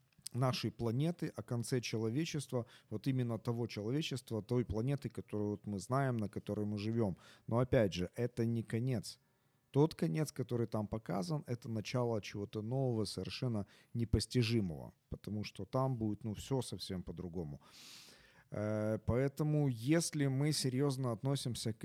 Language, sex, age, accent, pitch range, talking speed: Ukrainian, male, 40-59, native, 105-130 Hz, 135 wpm